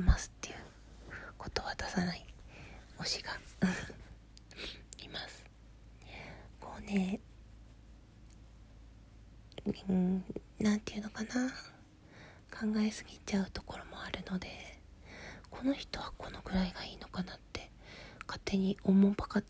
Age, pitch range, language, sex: 40-59, 180-215 Hz, Japanese, female